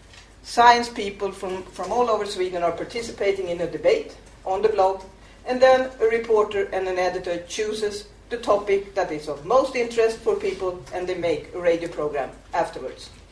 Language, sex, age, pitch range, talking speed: English, female, 50-69, 165-235 Hz, 175 wpm